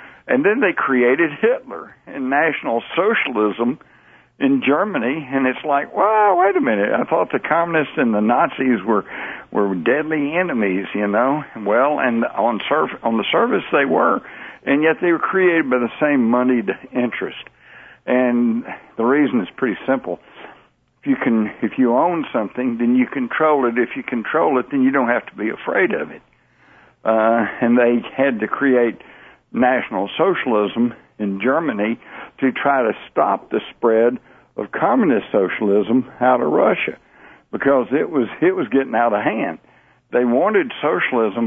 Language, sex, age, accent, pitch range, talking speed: English, male, 60-79, American, 115-150 Hz, 165 wpm